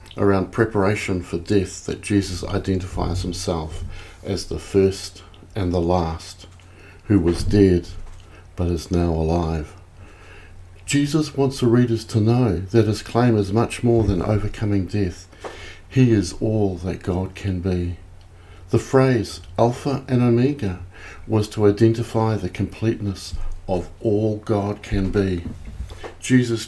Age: 50-69